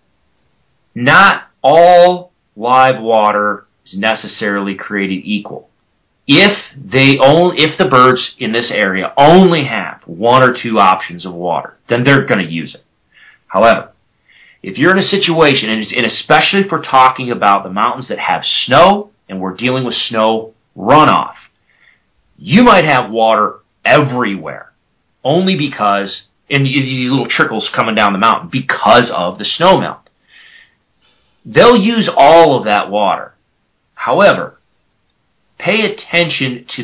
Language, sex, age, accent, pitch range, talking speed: English, male, 40-59, American, 105-150 Hz, 135 wpm